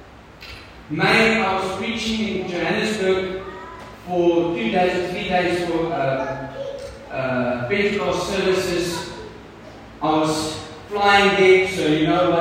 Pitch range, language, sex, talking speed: 145-190 Hz, English, male, 115 wpm